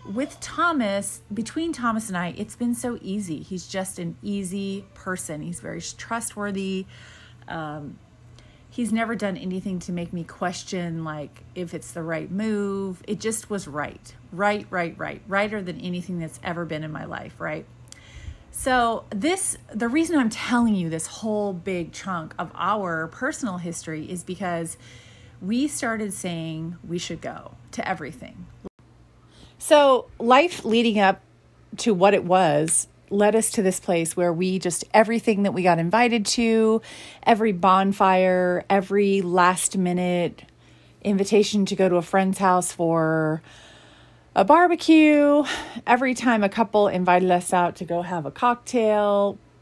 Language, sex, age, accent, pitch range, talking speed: English, female, 30-49, American, 175-220 Hz, 150 wpm